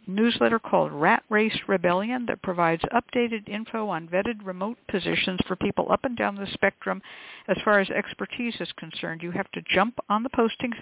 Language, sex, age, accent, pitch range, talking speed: English, female, 60-79, American, 175-215 Hz, 185 wpm